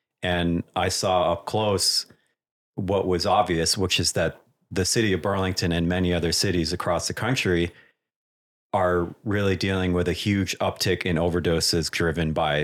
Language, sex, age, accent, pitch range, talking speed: English, male, 30-49, American, 85-100 Hz, 155 wpm